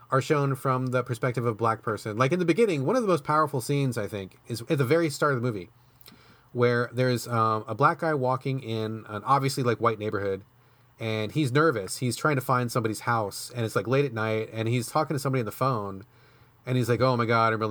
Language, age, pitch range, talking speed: English, 30-49, 110-145 Hz, 245 wpm